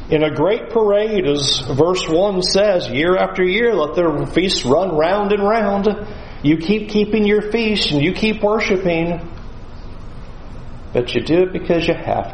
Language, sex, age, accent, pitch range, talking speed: English, male, 40-59, American, 140-210 Hz, 165 wpm